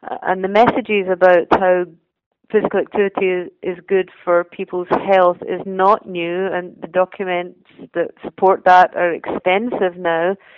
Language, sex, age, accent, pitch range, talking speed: English, female, 40-59, British, 180-210 Hz, 135 wpm